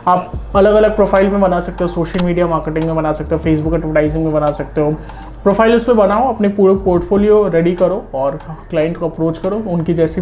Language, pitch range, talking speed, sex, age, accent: Hindi, 160-195 Hz, 215 wpm, male, 20-39, native